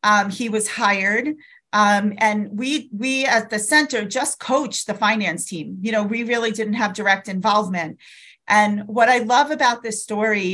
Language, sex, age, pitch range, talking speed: English, female, 40-59, 200-235 Hz, 175 wpm